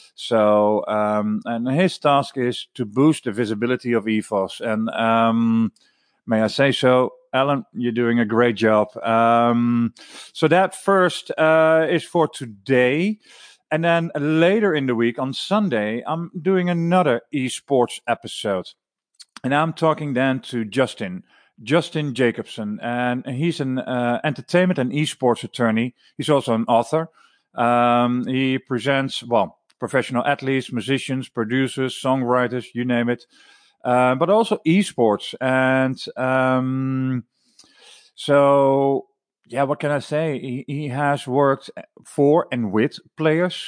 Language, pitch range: English, 120-155 Hz